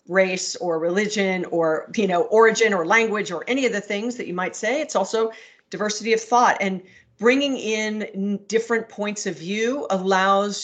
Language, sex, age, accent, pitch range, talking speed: English, female, 40-59, American, 185-225 Hz, 175 wpm